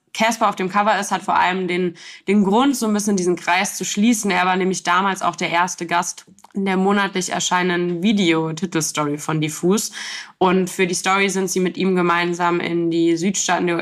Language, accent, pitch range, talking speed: German, German, 170-195 Hz, 195 wpm